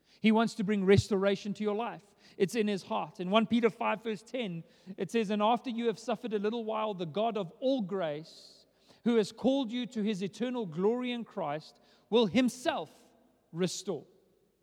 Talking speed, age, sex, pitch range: 190 wpm, 40-59, male, 175-215 Hz